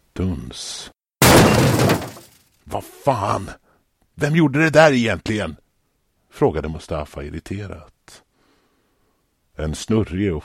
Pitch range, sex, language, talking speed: 75-110 Hz, male, Swedish, 75 wpm